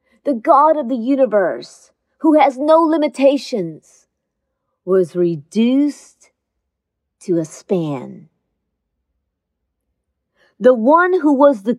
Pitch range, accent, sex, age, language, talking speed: 190-275 Hz, American, female, 40-59, English, 95 wpm